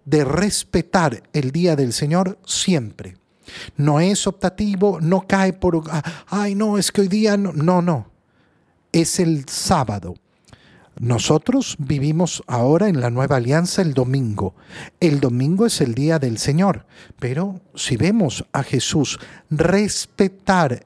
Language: Spanish